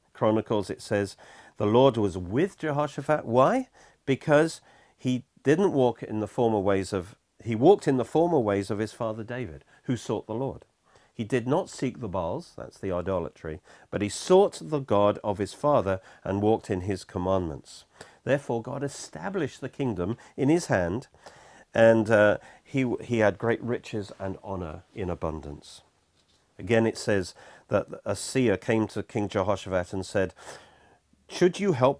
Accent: British